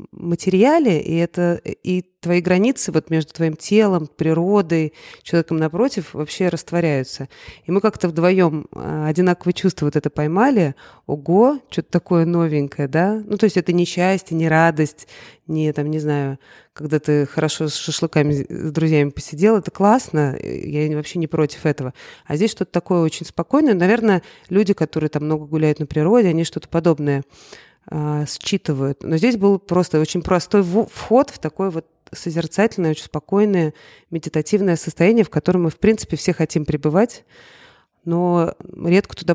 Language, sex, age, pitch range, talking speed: Russian, female, 30-49, 155-185 Hz, 150 wpm